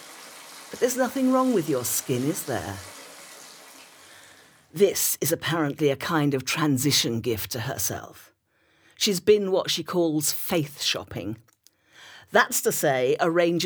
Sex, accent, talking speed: female, British, 135 wpm